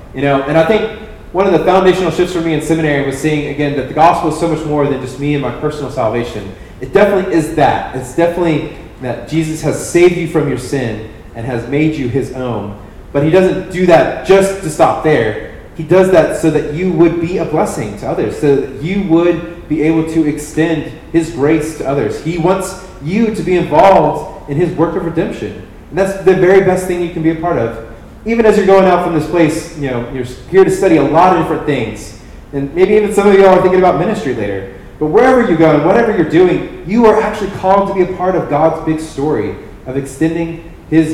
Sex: male